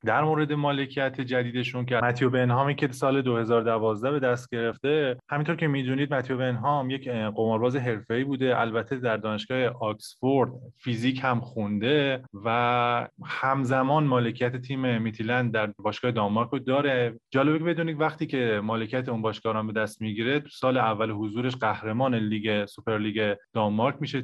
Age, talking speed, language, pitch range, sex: 20-39, 145 wpm, Persian, 115-140 Hz, male